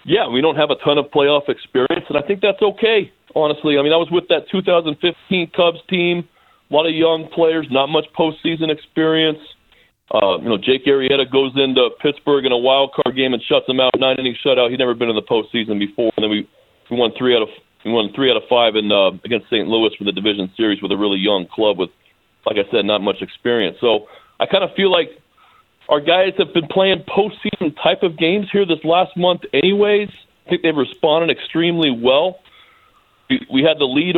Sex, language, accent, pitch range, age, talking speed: male, English, American, 135-170 Hz, 40-59, 220 wpm